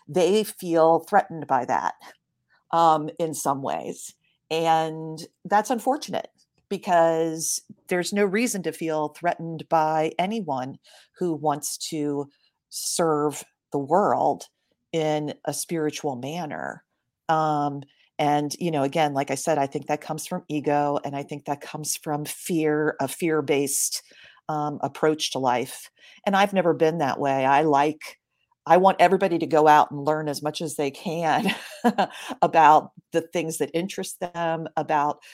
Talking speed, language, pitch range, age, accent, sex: 145 wpm, English, 145-165 Hz, 40-59, American, female